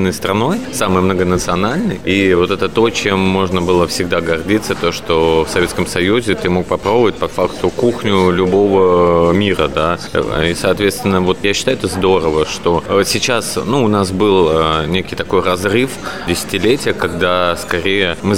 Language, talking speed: Russian, 150 wpm